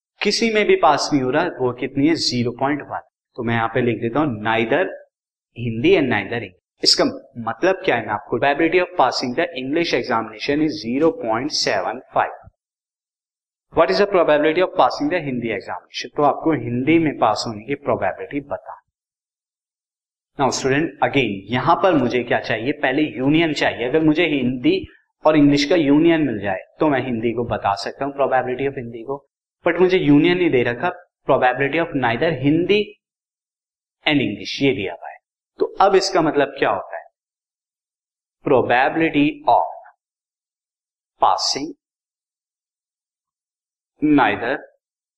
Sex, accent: male, native